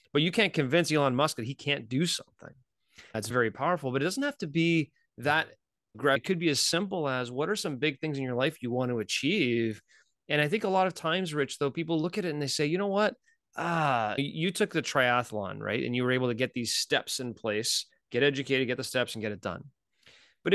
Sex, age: male, 30-49